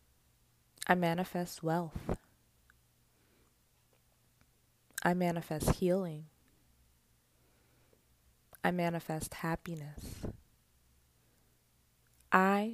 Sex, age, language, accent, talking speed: female, 20-39, English, American, 45 wpm